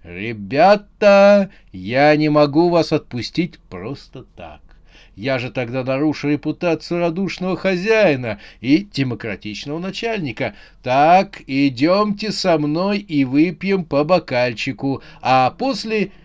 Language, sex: Russian, male